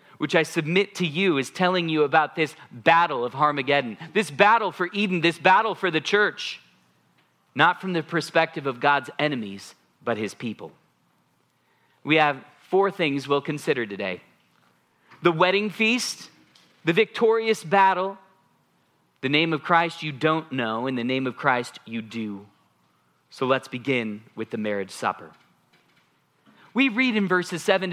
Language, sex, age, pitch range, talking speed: English, male, 30-49, 150-210 Hz, 155 wpm